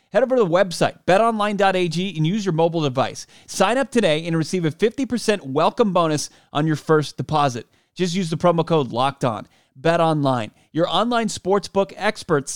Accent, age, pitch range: American, 30-49, 130-175 Hz